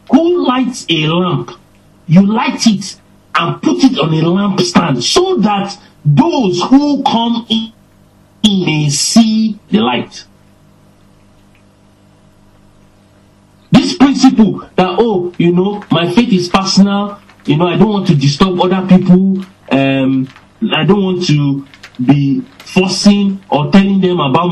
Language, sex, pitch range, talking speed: English, male, 120-200 Hz, 130 wpm